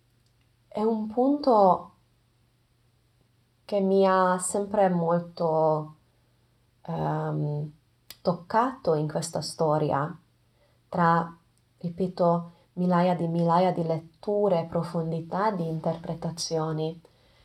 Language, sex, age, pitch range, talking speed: Italian, female, 20-39, 150-180 Hz, 80 wpm